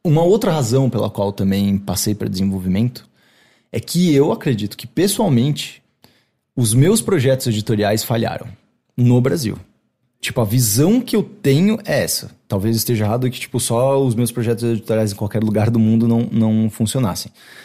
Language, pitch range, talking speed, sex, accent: English, 110-135 Hz, 165 wpm, male, Brazilian